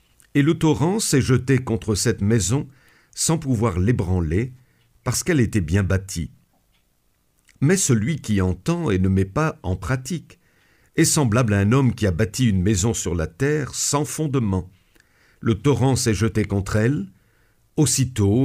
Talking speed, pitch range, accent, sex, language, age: 155 wpm, 105-140 Hz, French, male, French, 50-69